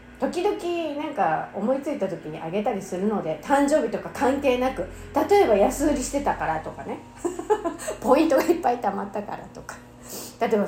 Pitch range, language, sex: 175-285 Hz, Japanese, female